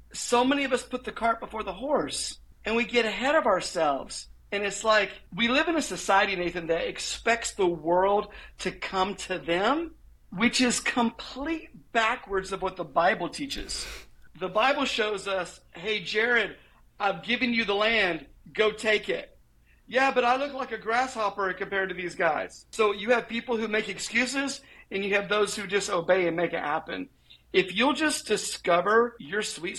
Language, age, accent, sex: English, 50-69, American, male